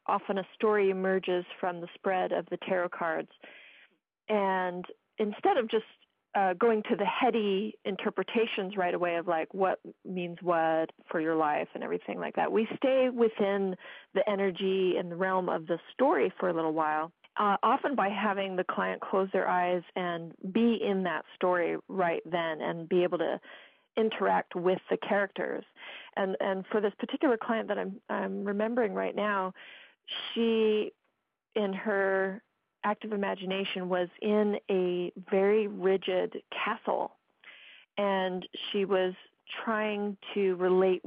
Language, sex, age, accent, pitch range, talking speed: English, female, 40-59, American, 185-210 Hz, 150 wpm